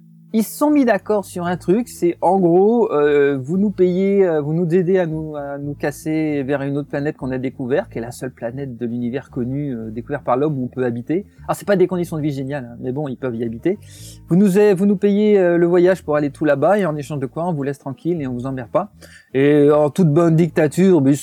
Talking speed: 265 wpm